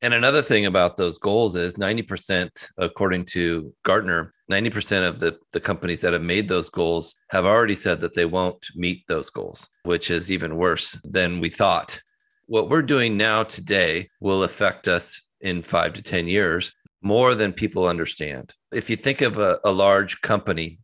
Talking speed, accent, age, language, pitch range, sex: 180 wpm, American, 40-59, English, 85-110 Hz, male